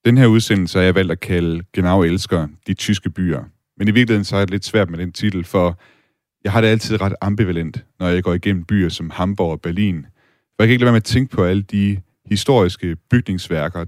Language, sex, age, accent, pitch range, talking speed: Danish, male, 30-49, native, 90-110 Hz, 240 wpm